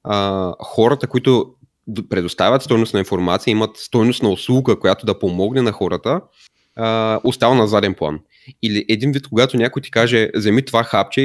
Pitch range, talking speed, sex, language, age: 105-130 Hz, 165 wpm, male, Bulgarian, 20-39